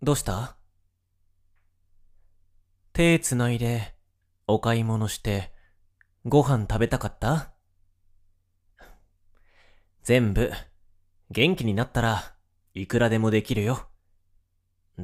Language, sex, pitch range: Japanese, male, 90-115 Hz